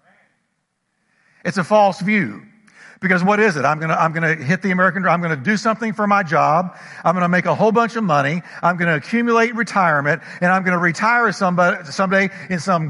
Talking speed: 220 wpm